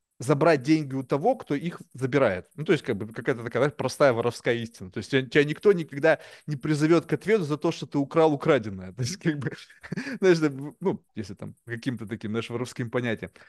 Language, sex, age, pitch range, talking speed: Russian, male, 20-39, 135-175 Hz, 200 wpm